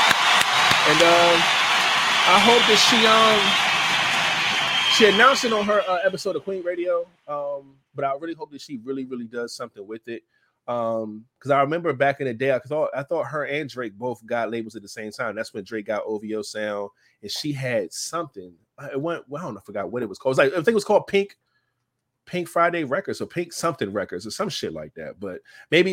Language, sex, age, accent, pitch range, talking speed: English, male, 20-39, American, 115-160 Hz, 225 wpm